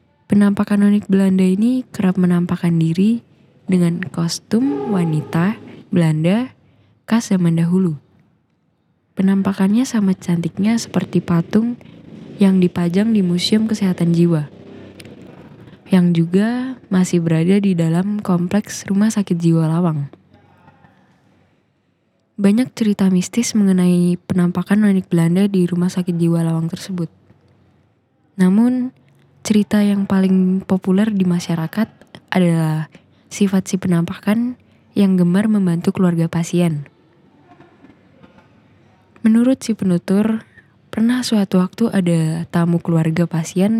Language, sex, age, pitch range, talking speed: Indonesian, female, 10-29, 170-205 Hz, 105 wpm